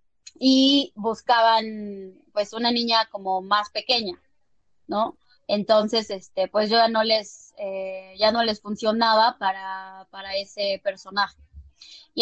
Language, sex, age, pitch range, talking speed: Portuguese, female, 20-39, 195-230 Hz, 130 wpm